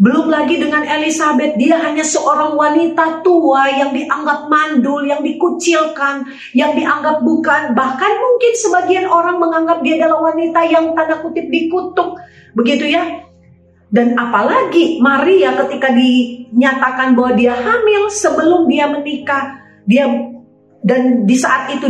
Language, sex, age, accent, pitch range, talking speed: Indonesian, female, 40-59, native, 260-330 Hz, 130 wpm